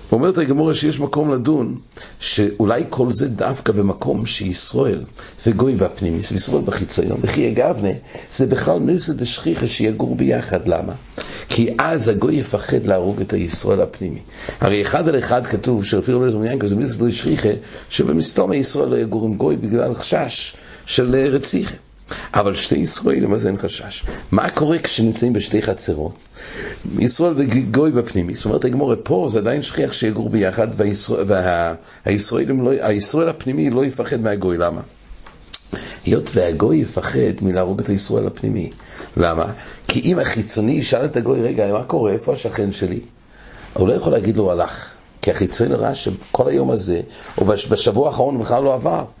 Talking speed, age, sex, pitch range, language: 150 wpm, 60-79, male, 100-135 Hz, English